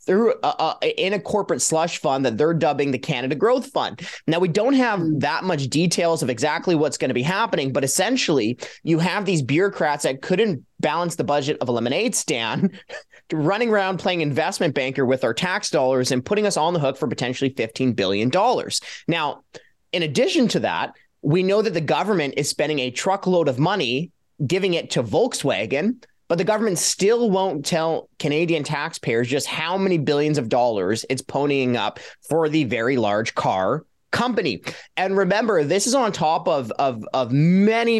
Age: 30-49